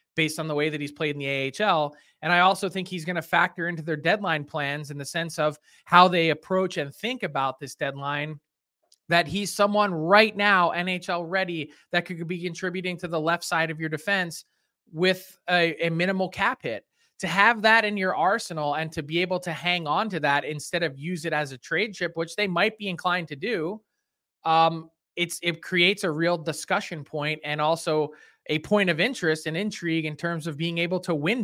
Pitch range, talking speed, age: 155-185 Hz, 210 wpm, 20-39